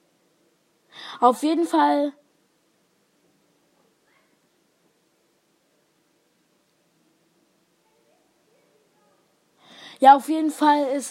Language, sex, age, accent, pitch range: English, female, 20-39, German, 230-295 Hz